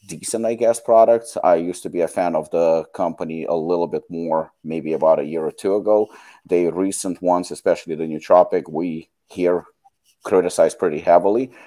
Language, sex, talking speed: English, male, 180 wpm